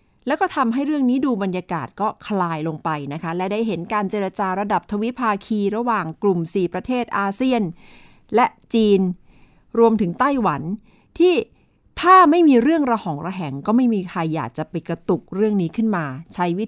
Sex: female